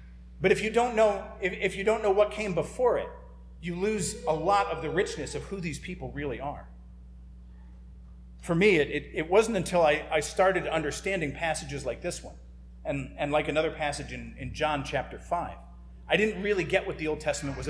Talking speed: 205 wpm